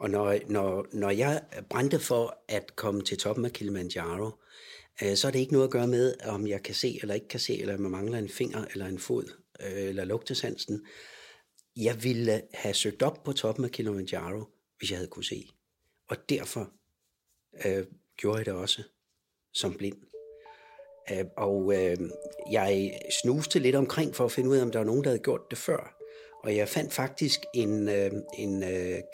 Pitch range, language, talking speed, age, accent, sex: 100-145 Hz, Danish, 190 wpm, 60-79, native, male